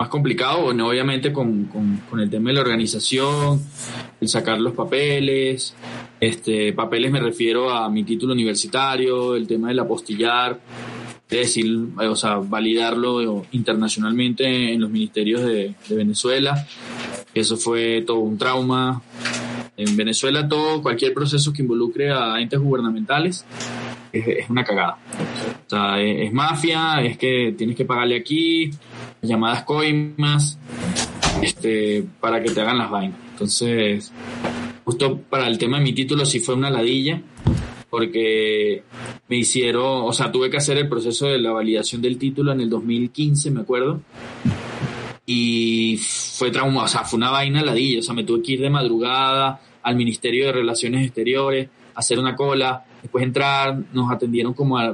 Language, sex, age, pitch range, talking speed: Spanish, male, 20-39, 115-135 Hz, 155 wpm